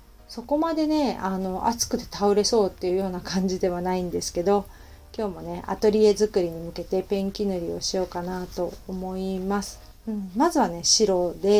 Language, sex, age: Japanese, female, 40-59